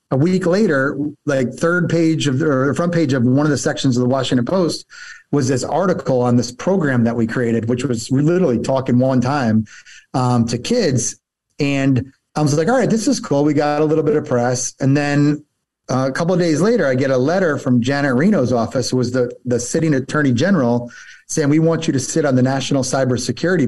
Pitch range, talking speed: 120-150 Hz, 220 wpm